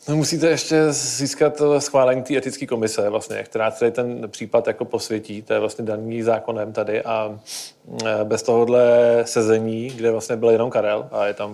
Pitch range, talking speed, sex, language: 110-130 Hz, 165 wpm, male, Czech